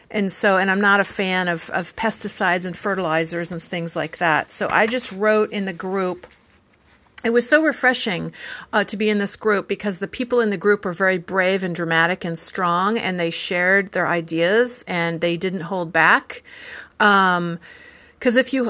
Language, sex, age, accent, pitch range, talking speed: English, female, 50-69, American, 170-210 Hz, 195 wpm